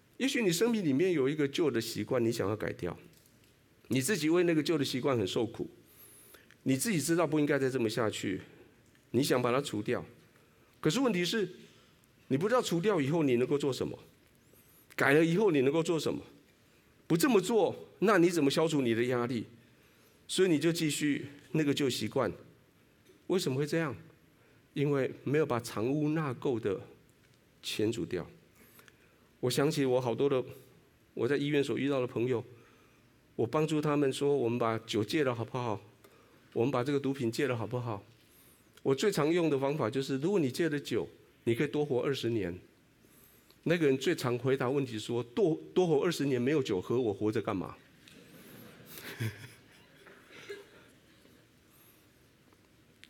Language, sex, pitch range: Chinese, male, 120-160 Hz